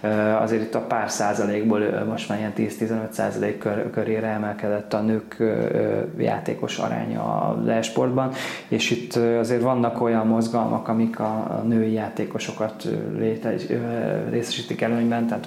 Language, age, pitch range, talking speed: Hungarian, 20-39, 110-120 Hz, 130 wpm